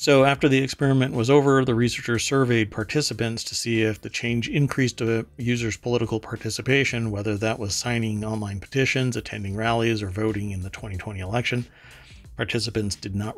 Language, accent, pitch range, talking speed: English, American, 105-120 Hz, 165 wpm